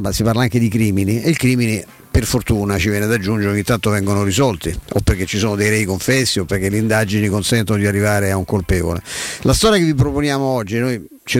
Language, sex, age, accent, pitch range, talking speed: Italian, male, 50-69, native, 100-120 Hz, 230 wpm